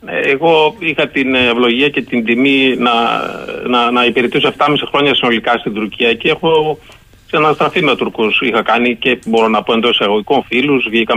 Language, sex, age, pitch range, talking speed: Greek, male, 30-49, 120-175 Hz, 165 wpm